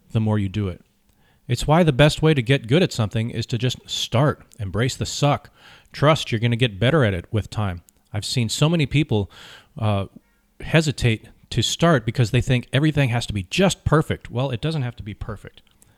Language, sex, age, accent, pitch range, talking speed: English, male, 40-59, American, 105-130 Hz, 215 wpm